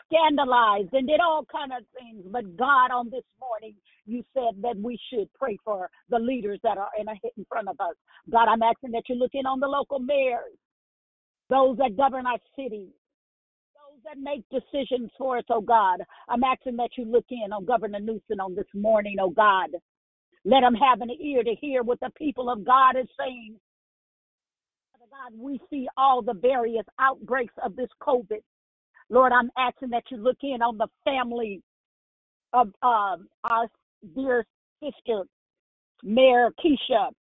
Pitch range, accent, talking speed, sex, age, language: 225-265 Hz, American, 175 wpm, female, 50-69, English